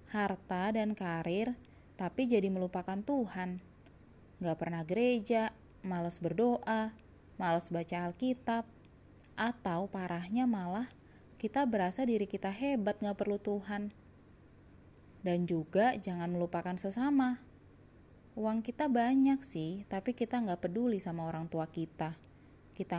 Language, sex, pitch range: Indonesian, female, 170-230 Hz